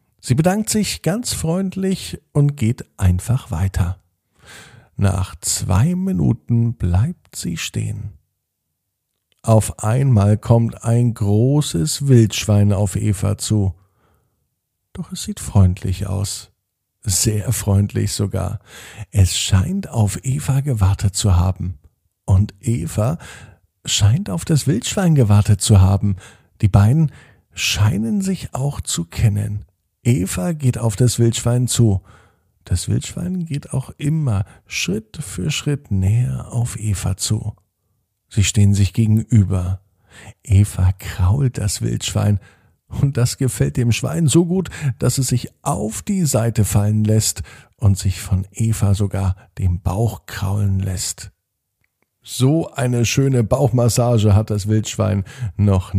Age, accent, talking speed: 50-69, German, 120 wpm